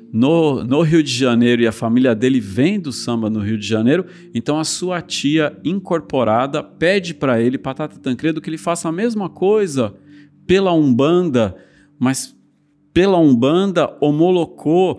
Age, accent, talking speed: 40-59, Brazilian, 150 wpm